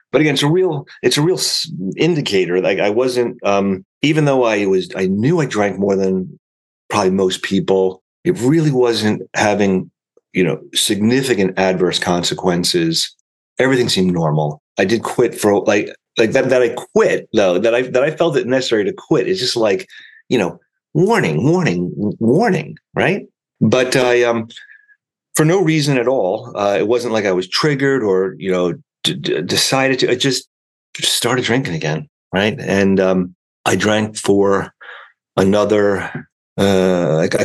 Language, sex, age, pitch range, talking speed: English, male, 40-59, 95-125 Hz, 160 wpm